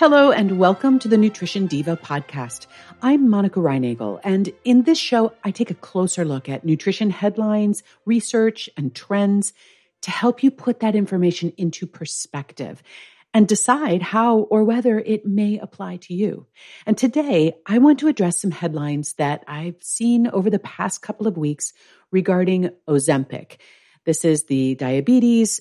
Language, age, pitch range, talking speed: English, 50-69, 155-220 Hz, 155 wpm